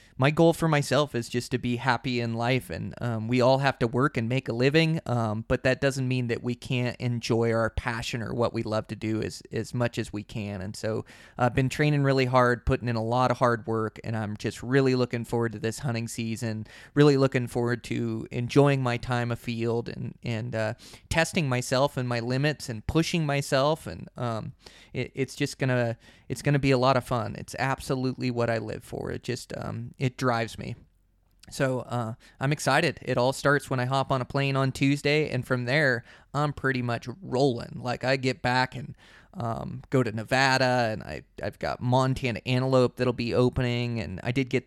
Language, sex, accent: English, male, American